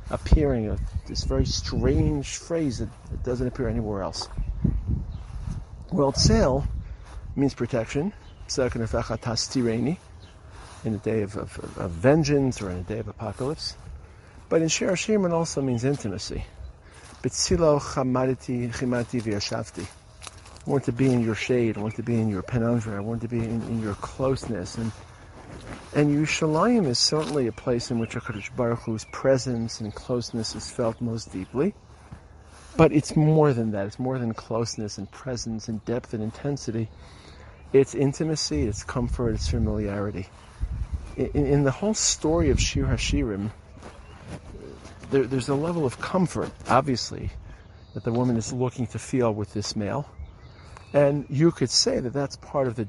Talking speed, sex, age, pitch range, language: 150 wpm, male, 50-69, 105-135 Hz, English